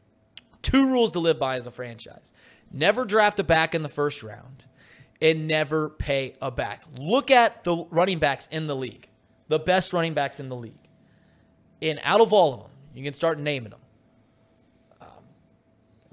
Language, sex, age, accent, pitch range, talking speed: English, male, 30-49, American, 130-155 Hz, 180 wpm